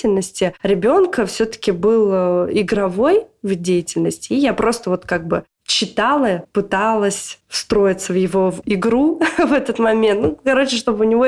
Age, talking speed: 20-39, 140 wpm